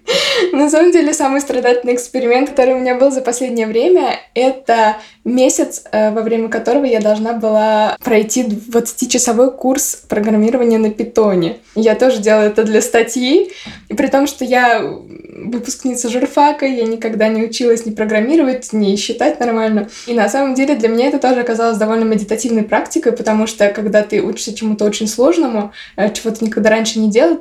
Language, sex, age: Russian, female, 20-39